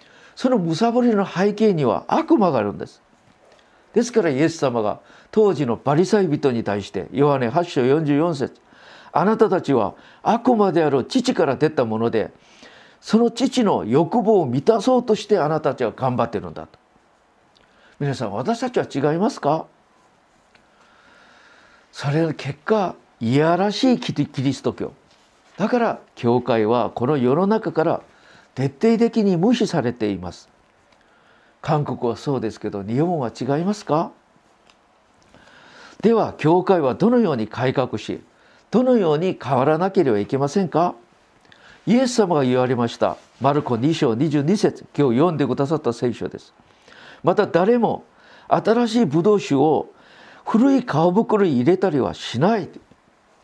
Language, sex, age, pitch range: Japanese, male, 50-69, 135-215 Hz